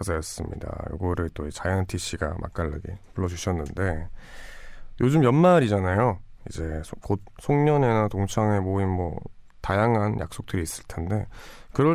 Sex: male